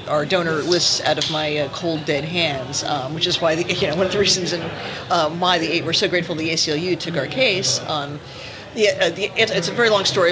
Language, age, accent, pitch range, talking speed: English, 40-59, American, 155-190 Hz, 255 wpm